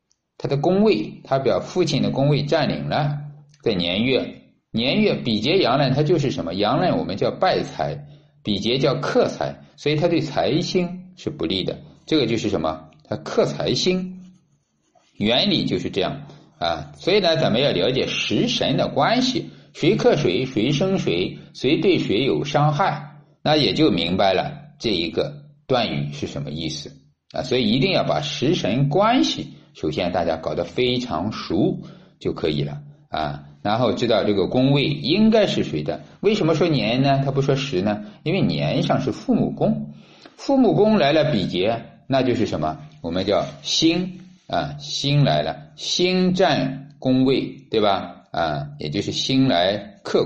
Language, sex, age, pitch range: Chinese, male, 50-69, 125-160 Hz